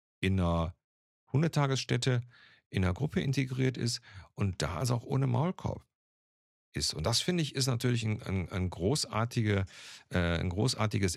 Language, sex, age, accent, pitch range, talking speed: German, male, 50-69, German, 95-120 Hz, 150 wpm